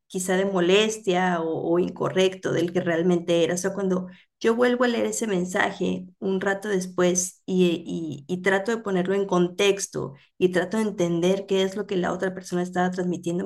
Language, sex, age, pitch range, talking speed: Spanish, female, 30-49, 180-215 Hz, 190 wpm